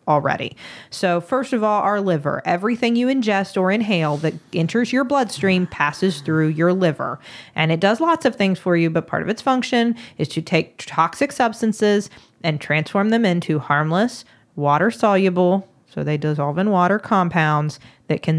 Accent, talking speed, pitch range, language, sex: American, 175 wpm, 165-230 Hz, English, female